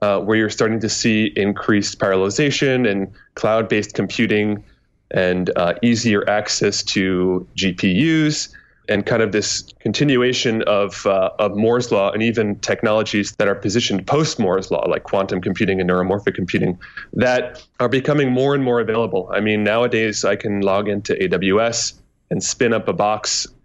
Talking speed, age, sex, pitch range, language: 155 wpm, 20-39, male, 100-120 Hz, English